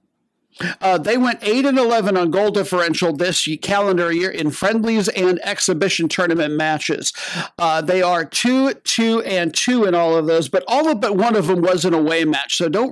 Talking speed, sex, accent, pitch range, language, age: 195 wpm, male, American, 170-205 Hz, English, 50-69